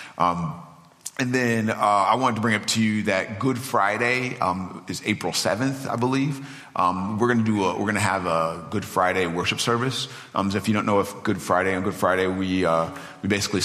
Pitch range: 90-105 Hz